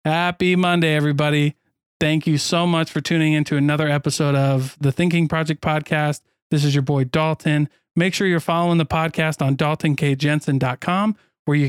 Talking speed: 165 wpm